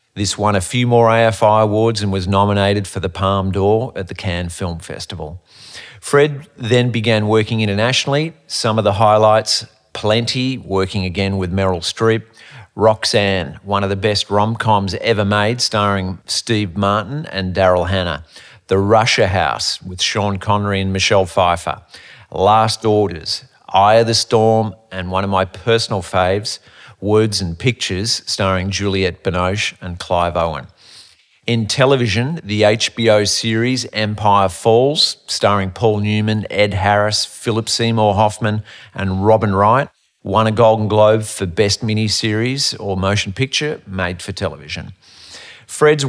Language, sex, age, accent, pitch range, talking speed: English, male, 40-59, Australian, 95-115 Hz, 145 wpm